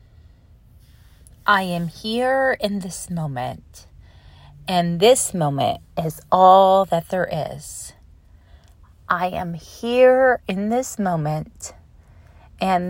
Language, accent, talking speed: English, American, 100 wpm